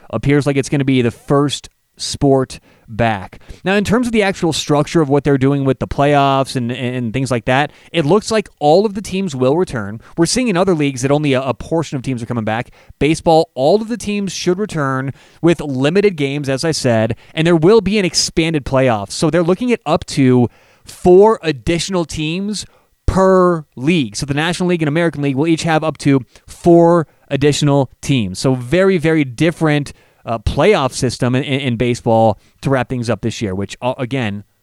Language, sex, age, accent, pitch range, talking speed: English, male, 30-49, American, 125-170 Hz, 200 wpm